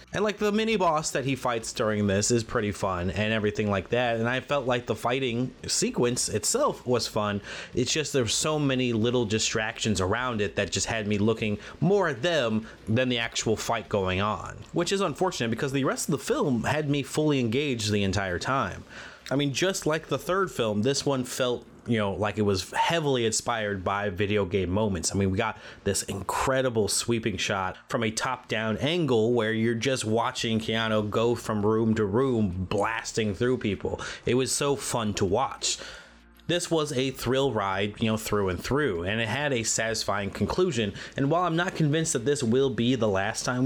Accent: American